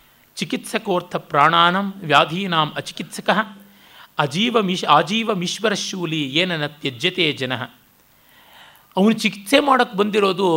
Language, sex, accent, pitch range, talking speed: Kannada, male, native, 145-190 Hz, 95 wpm